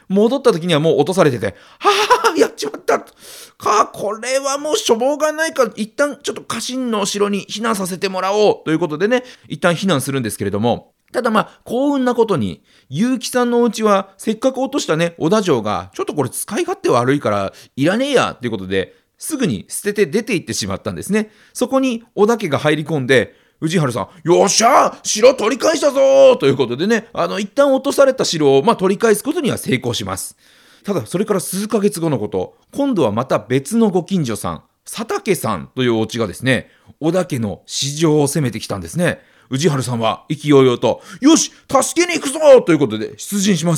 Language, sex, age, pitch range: Japanese, male, 40-59, 160-260 Hz